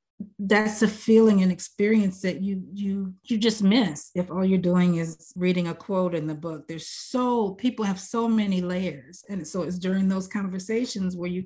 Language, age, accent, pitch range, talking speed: English, 40-59, American, 170-195 Hz, 195 wpm